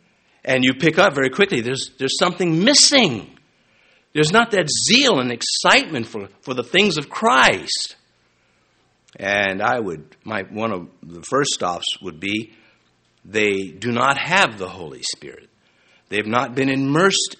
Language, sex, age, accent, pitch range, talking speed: English, male, 60-79, American, 115-165 Hz, 155 wpm